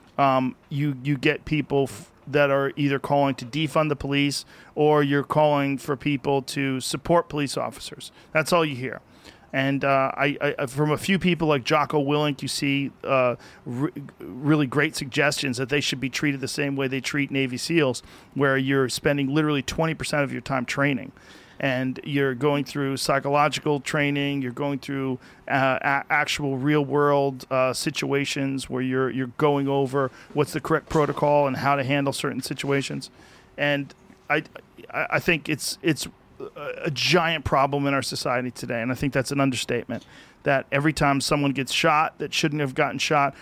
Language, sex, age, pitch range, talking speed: English, male, 40-59, 135-150 Hz, 175 wpm